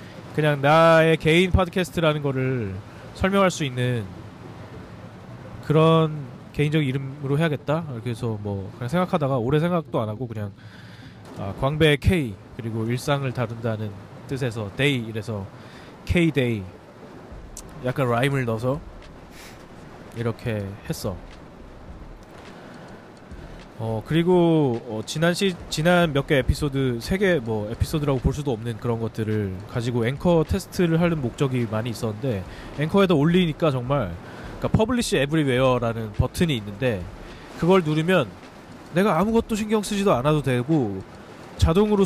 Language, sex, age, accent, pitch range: Korean, male, 20-39, native, 115-165 Hz